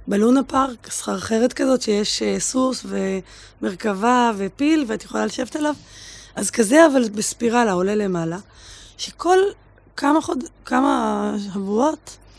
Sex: female